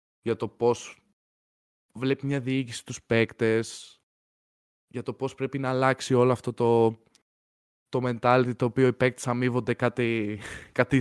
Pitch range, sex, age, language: 95-125 Hz, male, 20-39, Greek